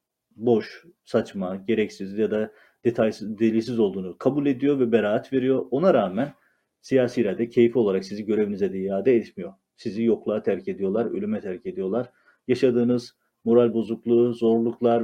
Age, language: 40-59, Turkish